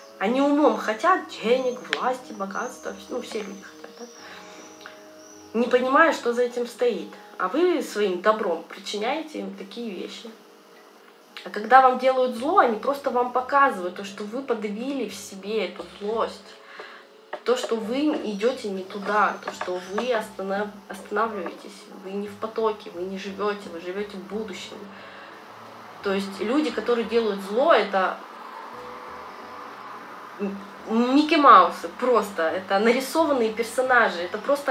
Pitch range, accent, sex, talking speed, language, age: 195-255 Hz, native, female, 135 wpm, Russian, 20-39